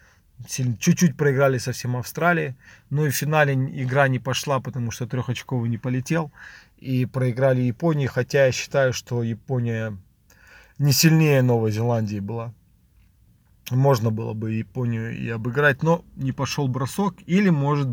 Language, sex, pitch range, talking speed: Russian, male, 115-140 Hz, 140 wpm